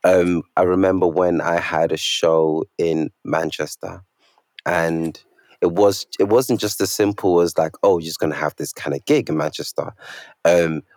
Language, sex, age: English, male, 20-39